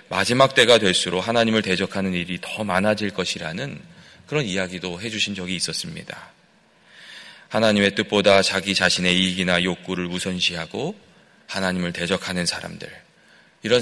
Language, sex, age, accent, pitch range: Korean, male, 30-49, native, 90-110 Hz